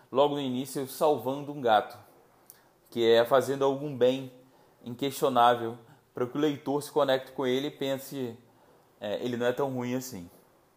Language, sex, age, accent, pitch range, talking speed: Portuguese, male, 20-39, Brazilian, 115-145 Hz, 160 wpm